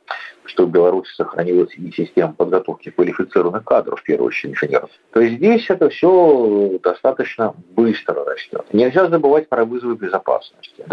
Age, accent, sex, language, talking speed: 40-59, native, male, Russian, 145 wpm